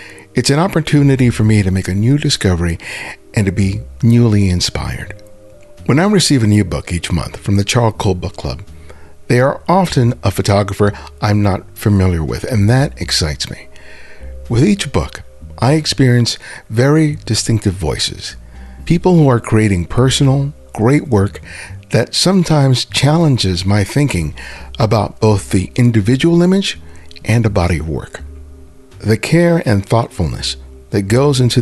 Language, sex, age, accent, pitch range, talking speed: English, male, 50-69, American, 85-125 Hz, 150 wpm